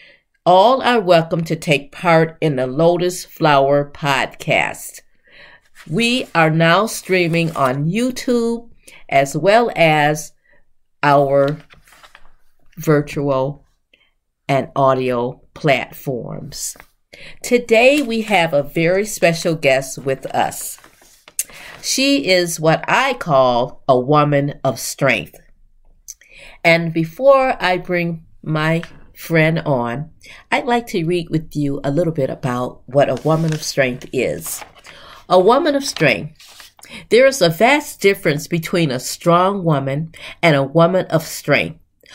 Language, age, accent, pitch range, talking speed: English, 50-69, American, 140-180 Hz, 120 wpm